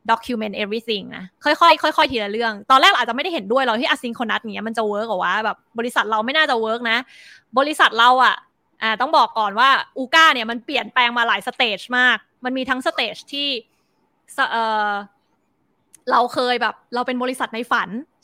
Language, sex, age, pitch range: Thai, female, 20-39, 225-280 Hz